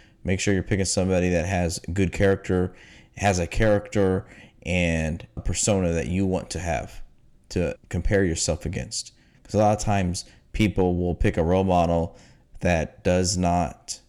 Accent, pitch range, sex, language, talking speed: American, 85-100 Hz, male, English, 160 wpm